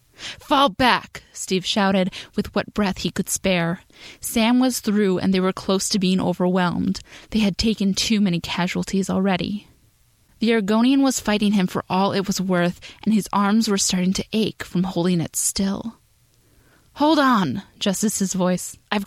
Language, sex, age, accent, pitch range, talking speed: English, female, 10-29, American, 180-215 Hz, 165 wpm